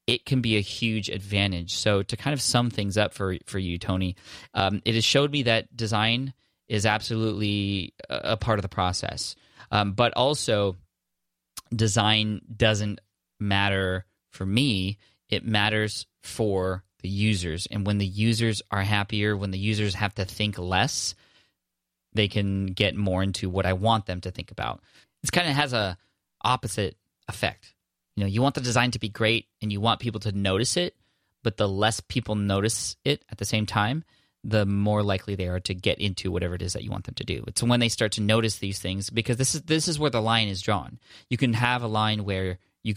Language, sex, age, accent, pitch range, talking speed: English, male, 20-39, American, 100-115 Hz, 200 wpm